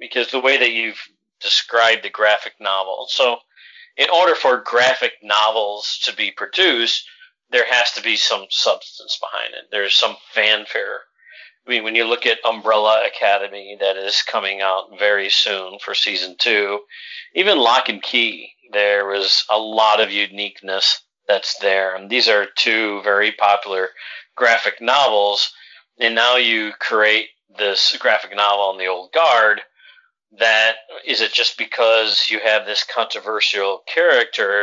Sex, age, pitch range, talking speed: male, 40-59, 100-125 Hz, 150 wpm